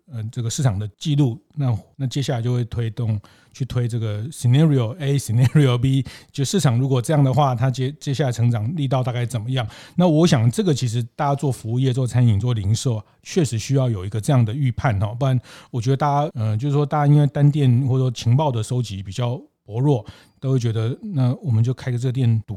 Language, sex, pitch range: Chinese, male, 115-145 Hz